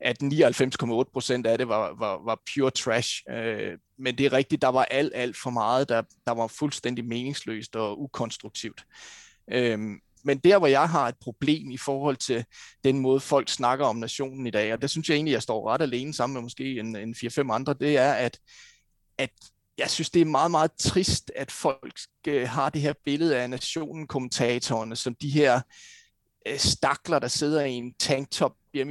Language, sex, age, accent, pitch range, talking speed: Danish, male, 30-49, native, 125-160 Hz, 185 wpm